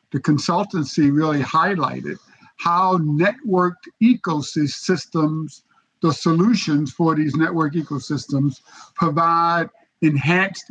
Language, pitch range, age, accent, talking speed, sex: English, 155-195 Hz, 50-69, American, 85 wpm, male